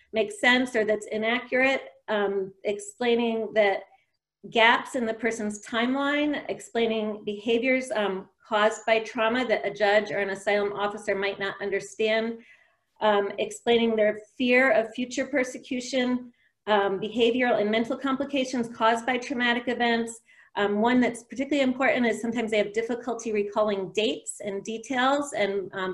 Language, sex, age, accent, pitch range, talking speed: English, female, 30-49, American, 205-235 Hz, 140 wpm